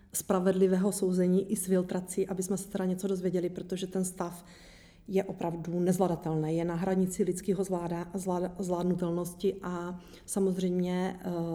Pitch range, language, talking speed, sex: 180-200 Hz, Czech, 130 wpm, female